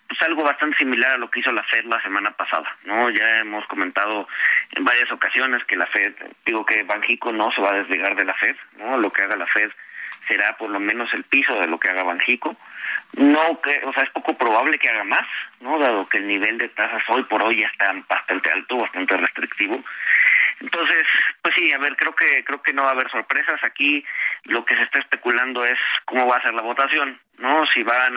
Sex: male